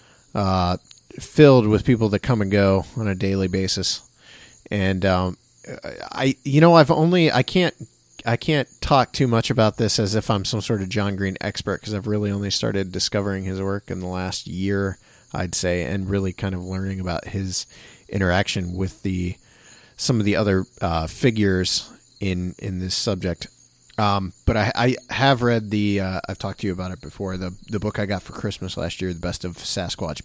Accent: American